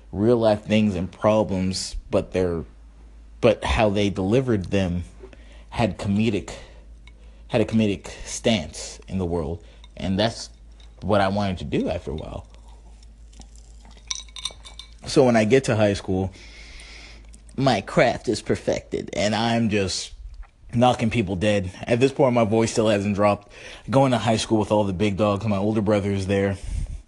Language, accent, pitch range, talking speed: English, American, 90-115 Hz, 155 wpm